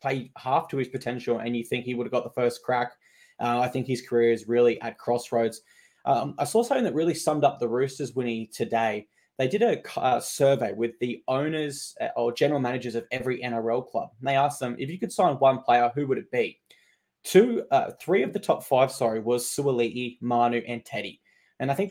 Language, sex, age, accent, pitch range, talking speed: English, male, 20-39, Australian, 120-135 Hz, 220 wpm